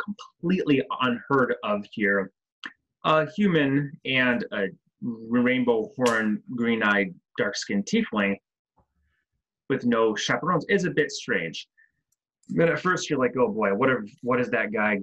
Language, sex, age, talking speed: English, male, 20-39, 130 wpm